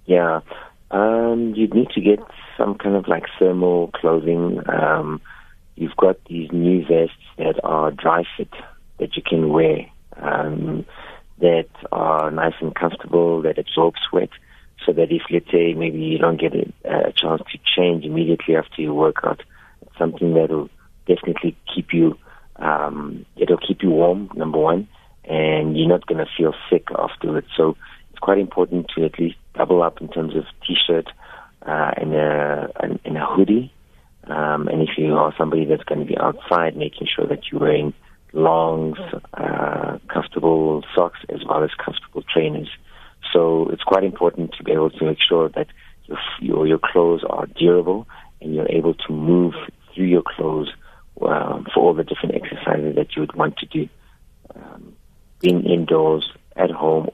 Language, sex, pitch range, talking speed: English, male, 80-85 Hz, 170 wpm